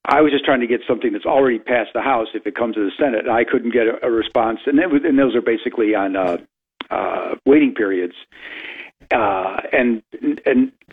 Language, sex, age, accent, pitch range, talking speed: English, male, 50-69, American, 110-135 Hz, 210 wpm